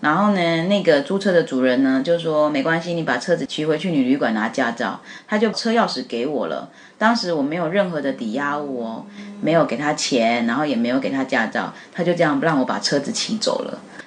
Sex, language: female, Chinese